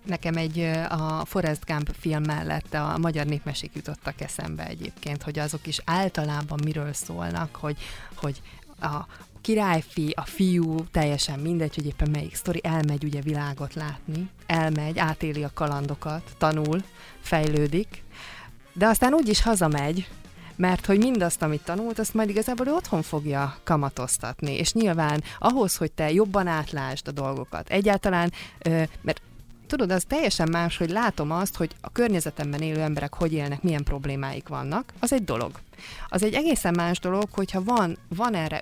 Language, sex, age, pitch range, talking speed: Hungarian, female, 20-39, 150-190 Hz, 150 wpm